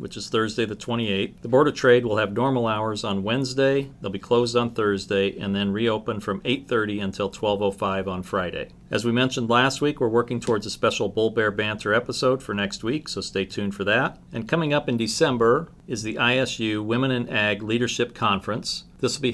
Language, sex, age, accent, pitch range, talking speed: English, male, 40-59, American, 105-125 Hz, 210 wpm